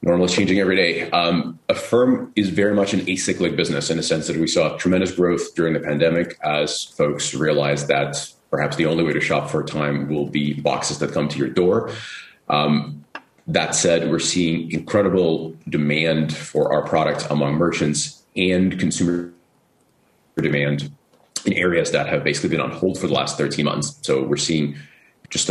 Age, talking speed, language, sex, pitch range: 30-49, 185 wpm, English, male, 70-85 Hz